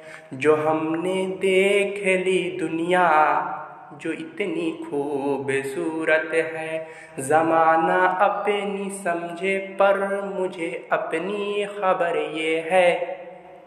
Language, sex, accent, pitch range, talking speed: Hindi, male, native, 150-180 Hz, 50 wpm